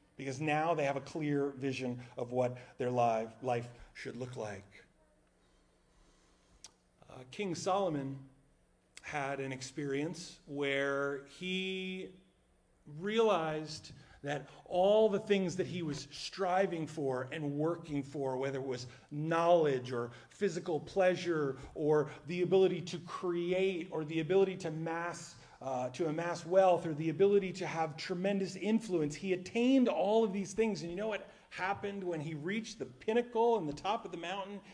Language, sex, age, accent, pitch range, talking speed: English, male, 40-59, American, 125-175 Hz, 150 wpm